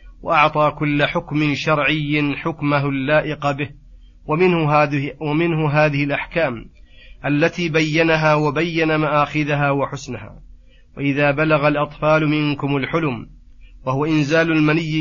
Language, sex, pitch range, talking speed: Arabic, male, 145-155 Hz, 100 wpm